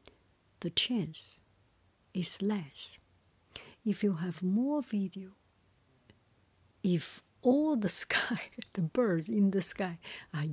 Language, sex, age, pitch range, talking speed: English, female, 60-79, 135-200 Hz, 110 wpm